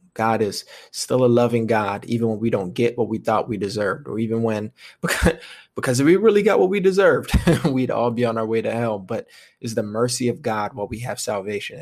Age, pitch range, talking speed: 20-39, 115-130 Hz, 230 wpm